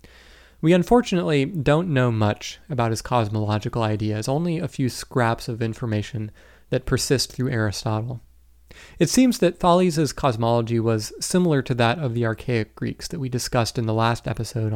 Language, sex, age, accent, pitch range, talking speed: English, male, 30-49, American, 110-140 Hz, 160 wpm